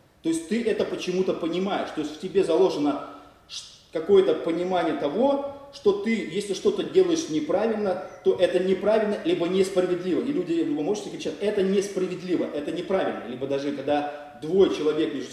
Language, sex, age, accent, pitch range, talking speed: Russian, male, 30-49, native, 150-240 Hz, 155 wpm